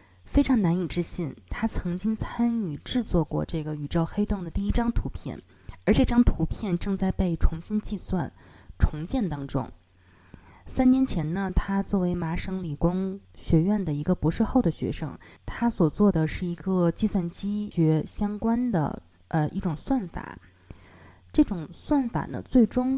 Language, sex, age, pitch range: Chinese, female, 20-39, 155-215 Hz